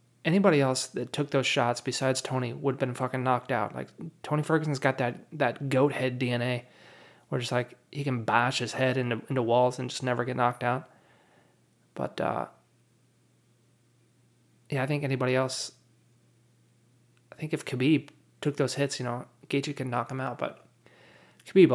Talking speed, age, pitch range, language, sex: 170 wpm, 20-39, 120-145 Hz, English, male